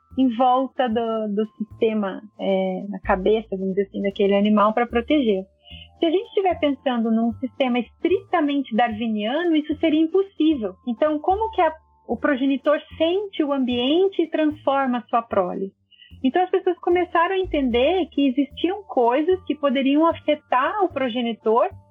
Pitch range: 225-315 Hz